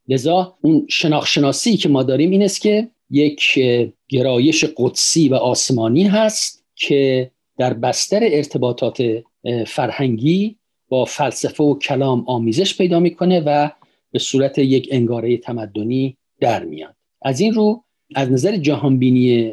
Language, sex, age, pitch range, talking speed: Persian, male, 50-69, 125-175 Hz, 125 wpm